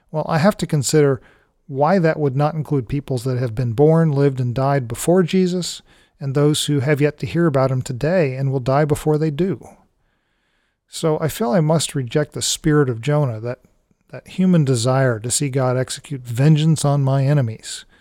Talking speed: 195 wpm